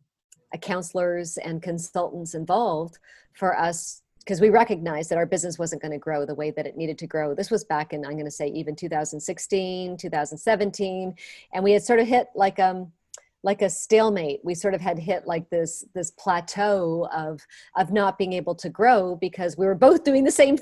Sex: female